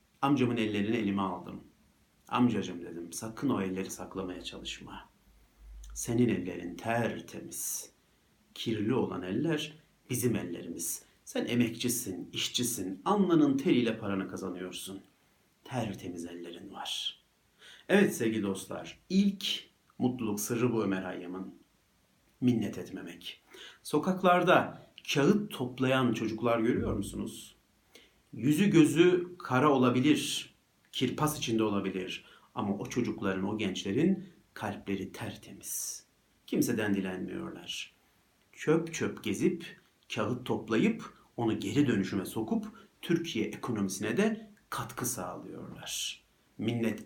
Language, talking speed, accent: Turkish, 100 wpm, native